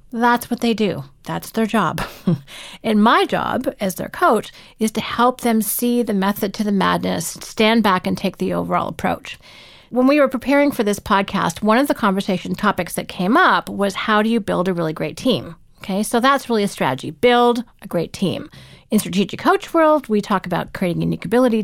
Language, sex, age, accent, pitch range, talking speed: English, female, 40-59, American, 180-230 Hz, 210 wpm